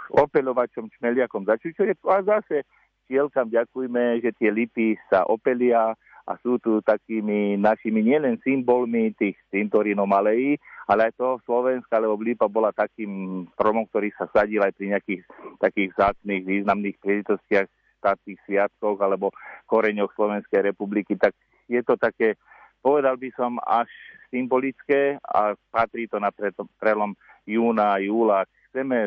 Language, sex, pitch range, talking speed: Slovak, male, 100-120 Hz, 135 wpm